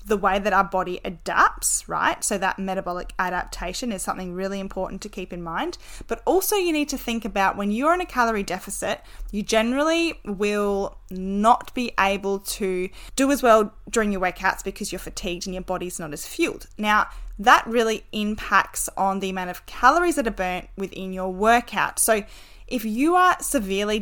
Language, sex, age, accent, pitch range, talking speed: English, female, 10-29, Australian, 185-225 Hz, 185 wpm